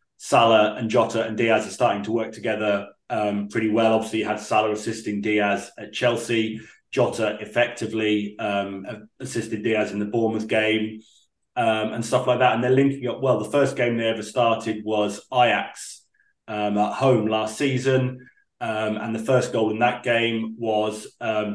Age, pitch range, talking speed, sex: 30-49, 105-120 Hz, 175 wpm, male